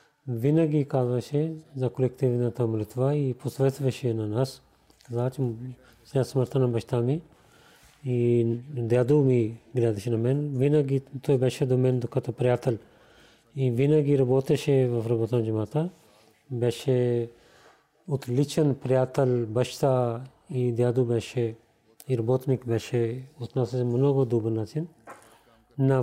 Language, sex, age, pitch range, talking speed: Bulgarian, male, 40-59, 120-140 Hz, 110 wpm